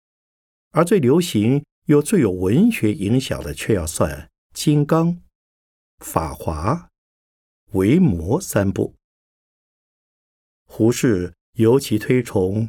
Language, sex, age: Chinese, male, 50-69